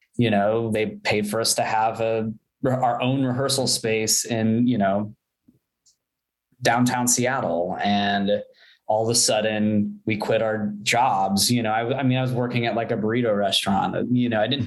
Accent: American